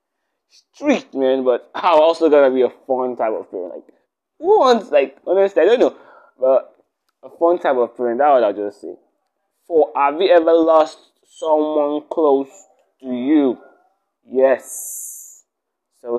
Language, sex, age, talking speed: English, male, 20-39, 155 wpm